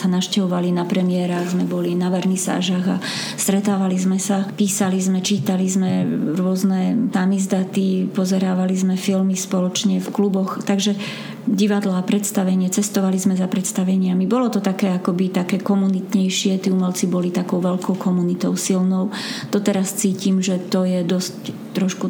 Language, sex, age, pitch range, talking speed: Slovak, female, 30-49, 185-200 Hz, 145 wpm